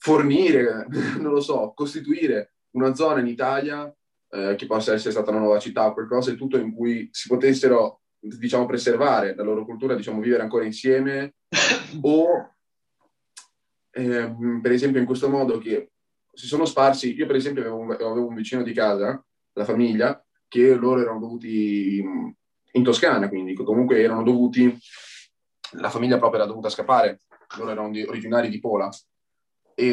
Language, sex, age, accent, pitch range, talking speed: Italian, male, 20-39, native, 110-135 Hz, 155 wpm